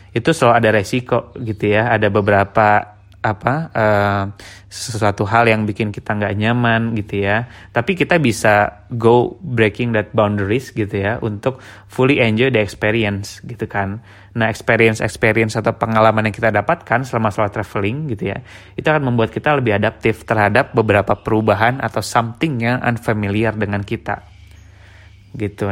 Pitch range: 105-120 Hz